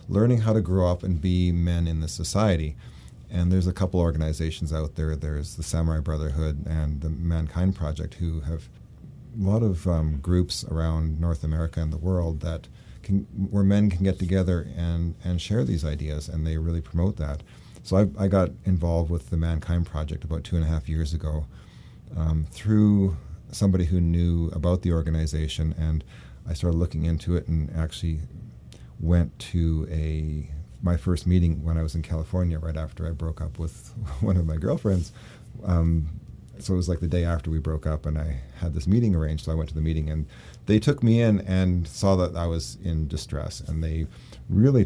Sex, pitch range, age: male, 80-90 Hz, 40-59